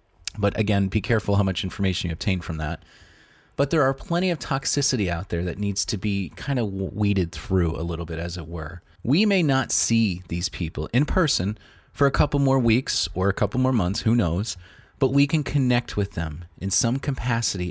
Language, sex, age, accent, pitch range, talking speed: English, male, 30-49, American, 90-120 Hz, 210 wpm